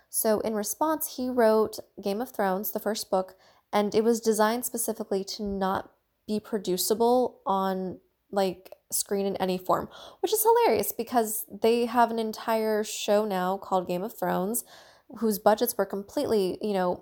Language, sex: English, female